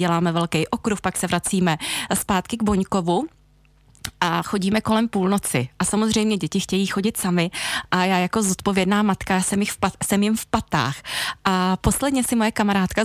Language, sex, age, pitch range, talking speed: Czech, female, 20-39, 185-215 Hz, 165 wpm